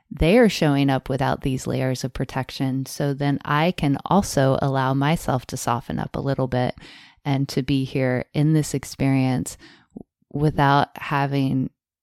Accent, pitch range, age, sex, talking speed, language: American, 135-155 Hz, 20-39, female, 155 wpm, English